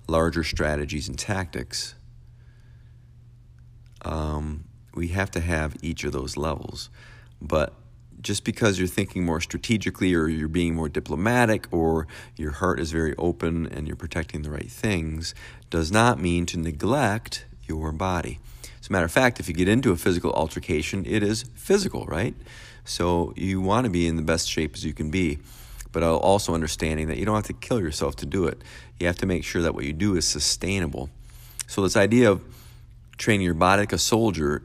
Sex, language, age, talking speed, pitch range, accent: male, English, 40-59, 185 wpm, 80-110 Hz, American